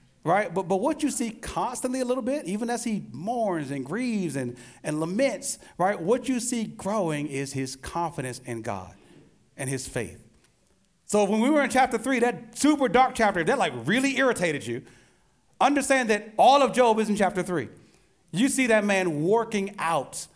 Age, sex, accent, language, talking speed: 40-59, male, American, English, 185 wpm